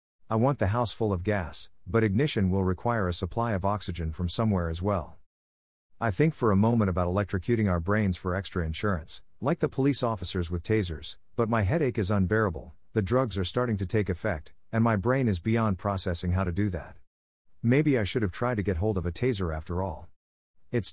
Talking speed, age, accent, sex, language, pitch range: 210 wpm, 50-69, American, male, English, 90-115 Hz